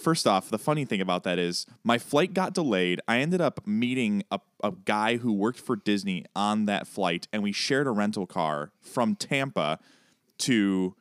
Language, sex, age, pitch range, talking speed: English, male, 20-39, 105-155 Hz, 190 wpm